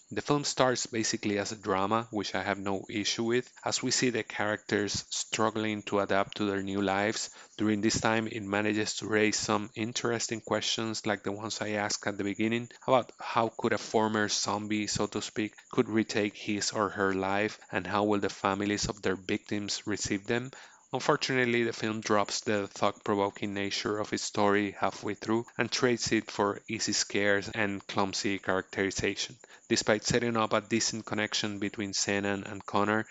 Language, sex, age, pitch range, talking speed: English, male, 30-49, 100-110 Hz, 180 wpm